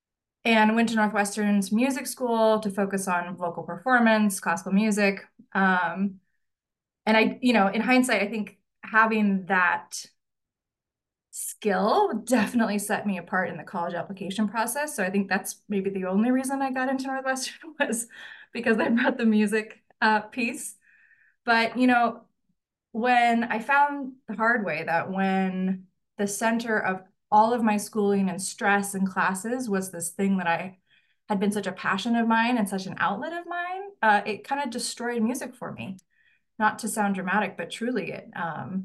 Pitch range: 190-230 Hz